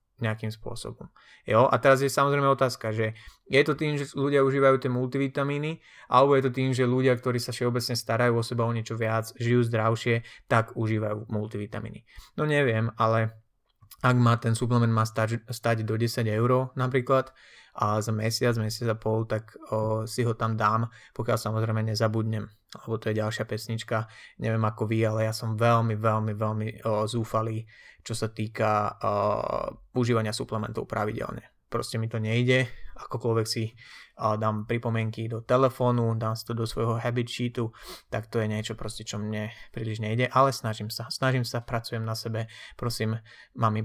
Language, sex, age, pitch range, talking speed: Slovak, male, 20-39, 110-125 Hz, 170 wpm